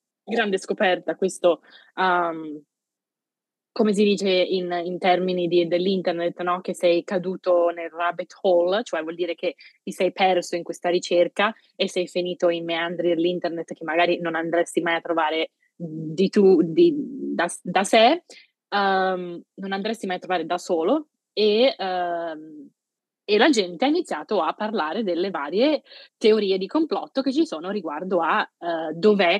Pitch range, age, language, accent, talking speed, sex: 175-215 Hz, 20-39, Italian, native, 155 wpm, female